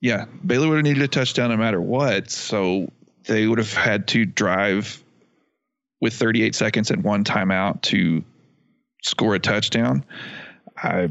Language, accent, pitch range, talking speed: English, American, 100-130 Hz, 150 wpm